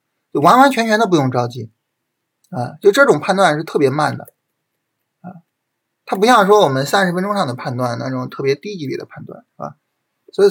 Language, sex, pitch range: Chinese, male, 135-190 Hz